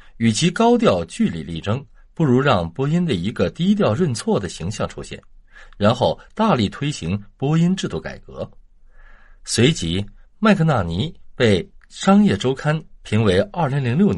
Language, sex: Chinese, male